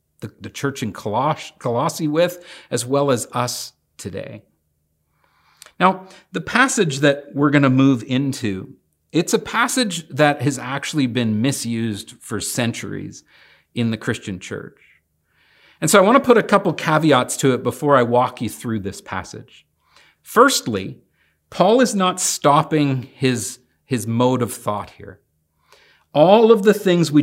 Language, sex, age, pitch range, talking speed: English, male, 50-69, 115-155 Hz, 150 wpm